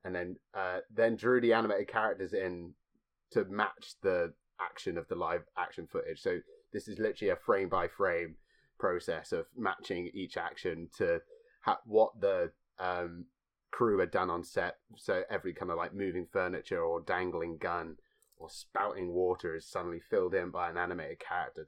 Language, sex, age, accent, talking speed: English, male, 30-49, British, 170 wpm